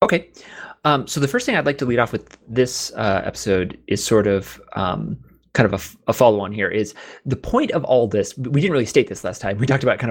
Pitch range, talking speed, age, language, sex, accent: 105-140 Hz, 255 wpm, 30-49, English, male, American